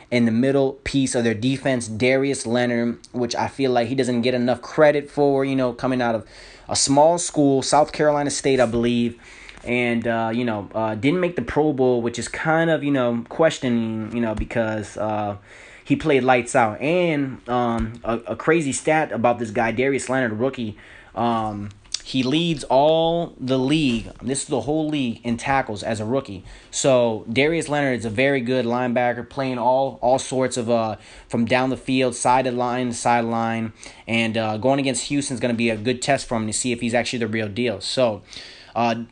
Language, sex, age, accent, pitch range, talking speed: English, male, 20-39, American, 115-130 Hz, 205 wpm